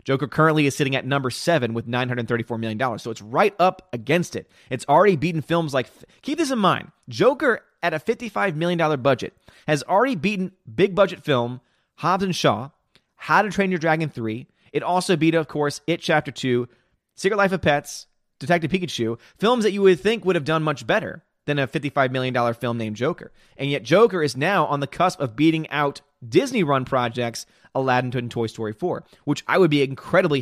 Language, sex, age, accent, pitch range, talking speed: English, male, 30-49, American, 125-175 Hz, 195 wpm